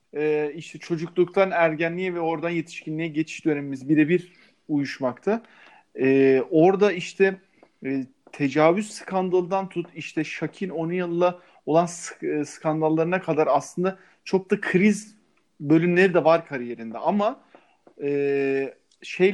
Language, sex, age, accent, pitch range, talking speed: Turkish, male, 40-59, native, 155-200 Hz, 115 wpm